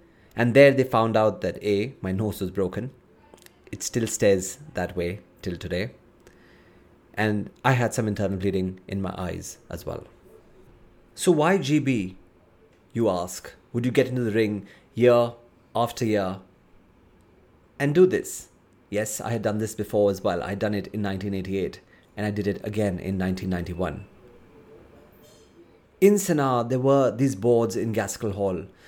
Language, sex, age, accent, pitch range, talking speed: English, male, 30-49, Indian, 100-130 Hz, 160 wpm